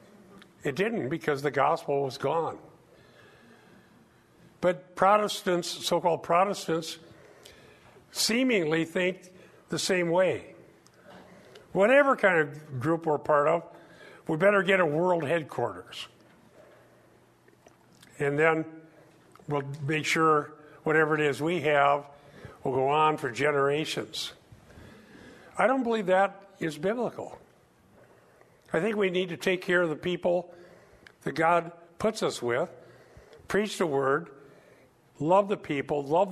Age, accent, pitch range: 50-69, American, 150-190 Hz